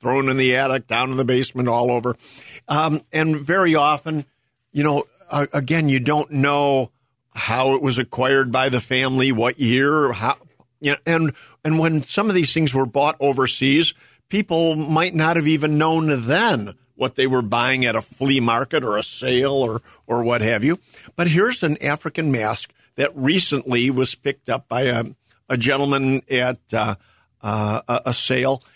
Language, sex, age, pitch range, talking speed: English, male, 50-69, 120-145 Hz, 180 wpm